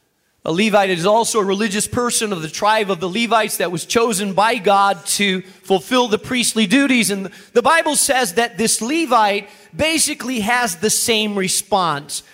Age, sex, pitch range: 40-59, male, 190-260 Hz